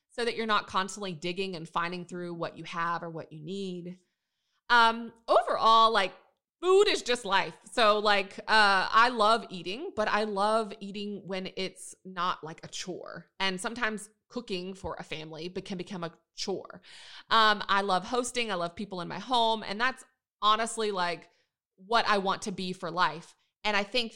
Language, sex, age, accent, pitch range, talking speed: English, female, 30-49, American, 180-225 Hz, 185 wpm